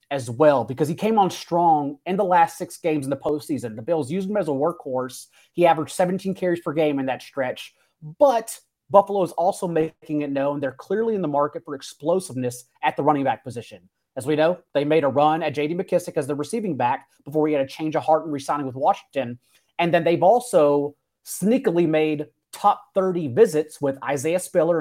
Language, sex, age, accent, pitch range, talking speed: English, male, 30-49, American, 145-185 Hz, 210 wpm